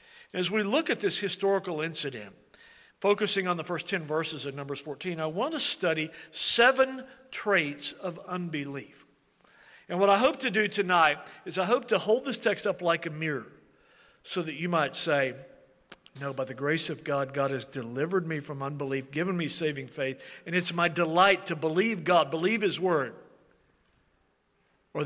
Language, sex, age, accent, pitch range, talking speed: English, male, 50-69, American, 140-185 Hz, 175 wpm